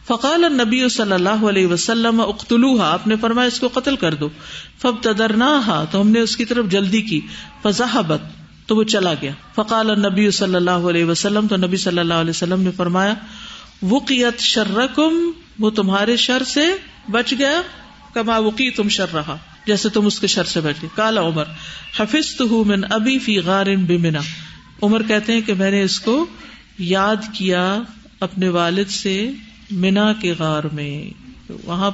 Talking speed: 120 wpm